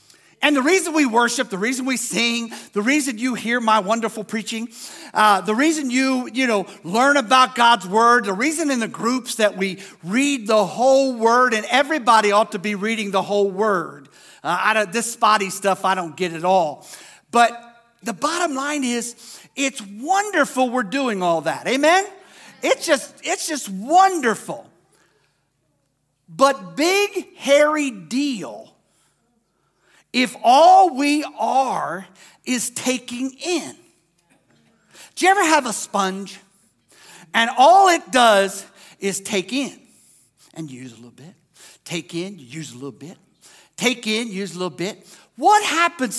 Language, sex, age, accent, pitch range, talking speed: English, male, 50-69, American, 200-275 Hz, 150 wpm